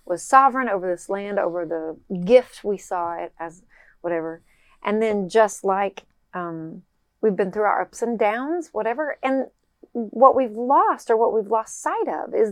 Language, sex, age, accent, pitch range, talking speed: English, female, 30-49, American, 180-225 Hz, 175 wpm